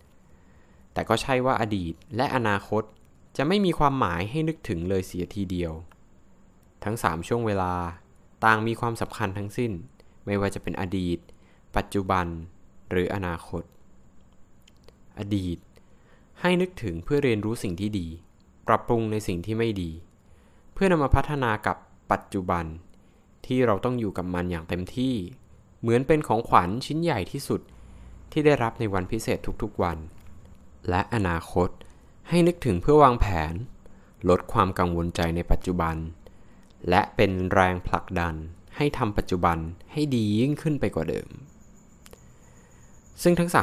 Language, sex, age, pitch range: Thai, male, 20-39, 85-115 Hz